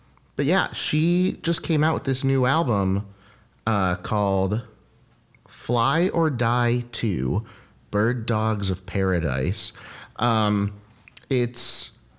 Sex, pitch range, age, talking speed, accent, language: male, 95-120 Hz, 30-49, 110 wpm, American, English